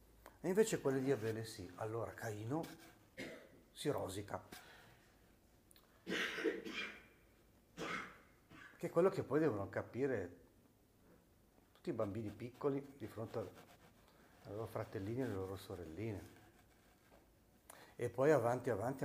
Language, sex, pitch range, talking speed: Italian, male, 110-155 Hz, 105 wpm